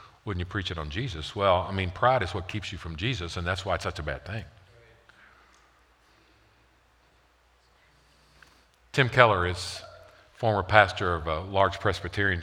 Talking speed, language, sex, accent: 160 wpm, English, male, American